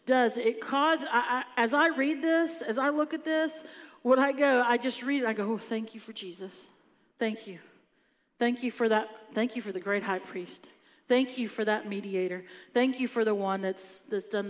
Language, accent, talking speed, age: English, American, 225 wpm, 50-69